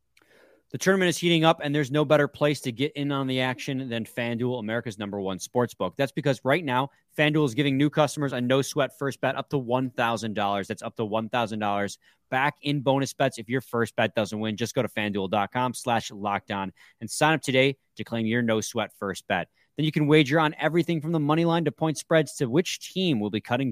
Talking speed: 230 wpm